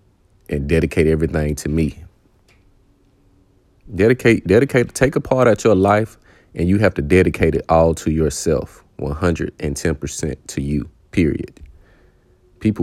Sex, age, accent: male, 30-49, American